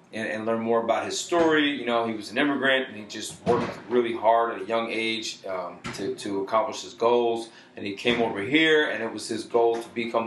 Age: 30-49